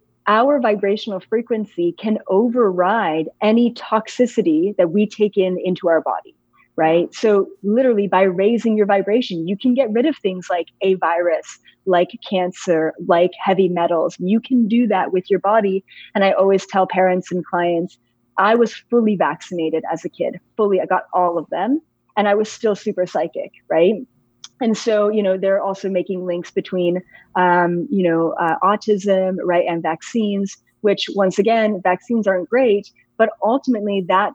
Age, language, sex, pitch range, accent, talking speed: 30-49, English, female, 185-225 Hz, American, 165 wpm